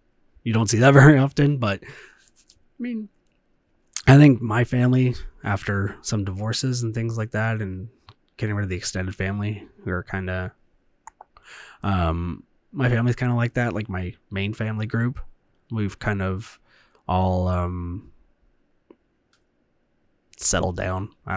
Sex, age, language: male, 20-39, English